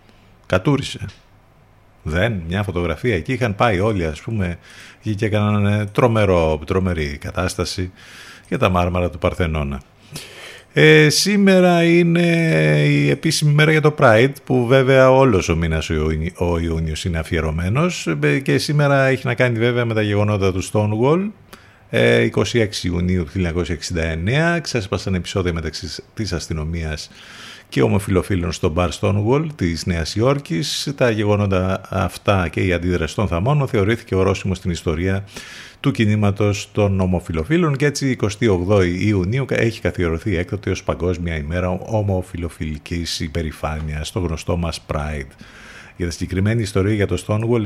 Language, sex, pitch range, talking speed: Greek, male, 85-115 Hz, 135 wpm